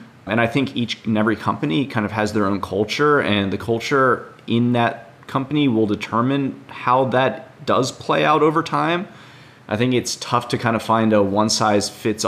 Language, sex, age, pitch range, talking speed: English, male, 30-49, 105-120 Hz, 195 wpm